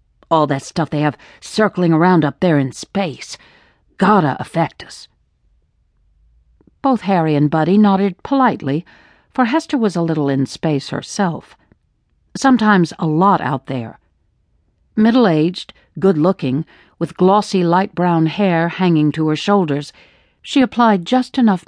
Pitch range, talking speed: 140-200 Hz, 135 wpm